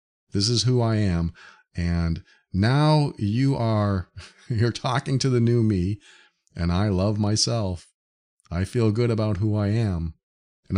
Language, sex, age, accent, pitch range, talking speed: English, male, 40-59, American, 90-125 Hz, 150 wpm